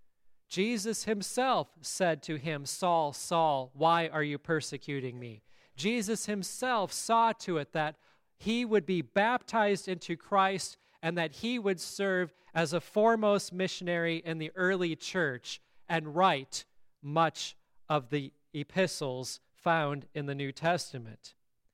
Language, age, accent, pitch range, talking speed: English, 40-59, American, 165-190 Hz, 130 wpm